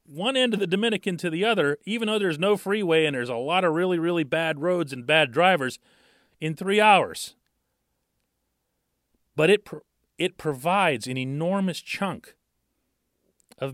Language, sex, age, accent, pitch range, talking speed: English, male, 40-59, American, 135-190 Hz, 155 wpm